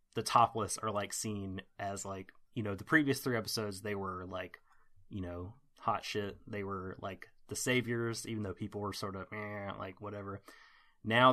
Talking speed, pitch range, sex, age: 185 wpm, 100-115 Hz, male, 30-49